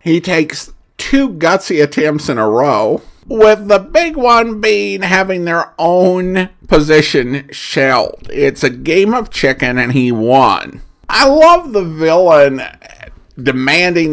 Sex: male